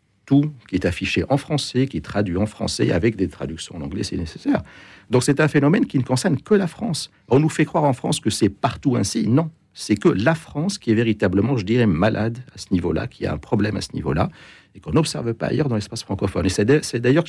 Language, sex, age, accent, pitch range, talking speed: French, male, 60-79, French, 95-130 Hz, 245 wpm